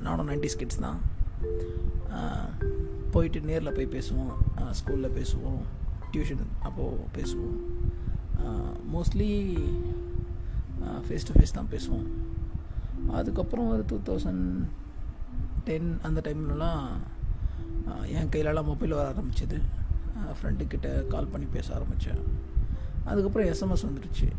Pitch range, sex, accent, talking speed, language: 75-95 Hz, male, native, 95 wpm, Tamil